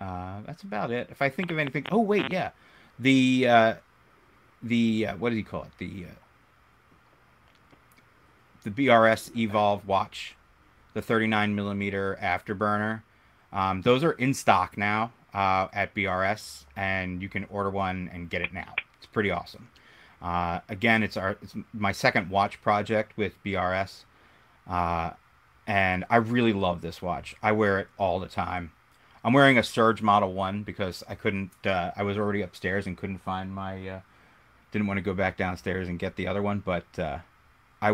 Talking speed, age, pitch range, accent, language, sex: 170 wpm, 30-49, 90-110 Hz, American, English, male